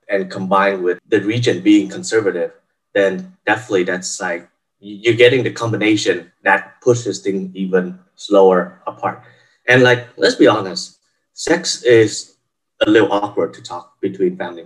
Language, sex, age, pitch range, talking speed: English, male, 20-39, 95-125 Hz, 145 wpm